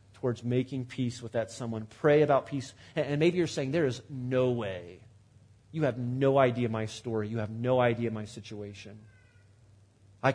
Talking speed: 175 wpm